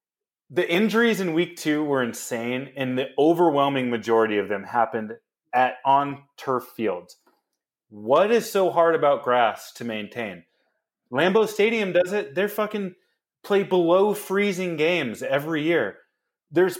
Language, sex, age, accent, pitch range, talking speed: English, male, 30-49, American, 120-175 Hz, 140 wpm